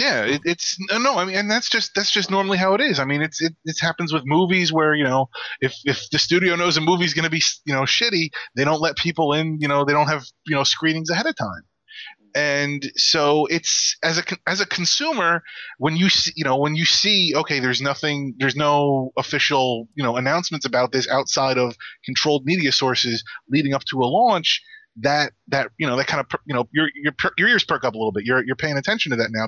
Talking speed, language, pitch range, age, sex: 240 wpm, English, 130-165 Hz, 30-49, male